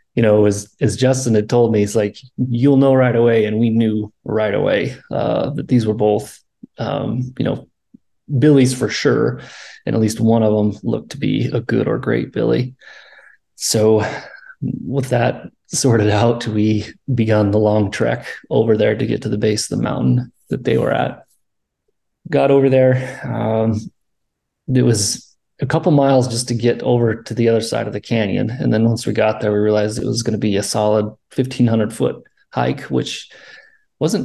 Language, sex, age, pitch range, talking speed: English, male, 30-49, 110-135 Hz, 195 wpm